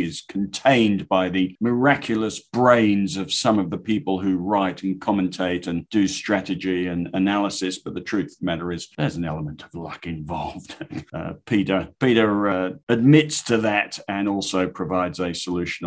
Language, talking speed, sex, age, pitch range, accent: English, 170 wpm, male, 50-69, 95-110 Hz, British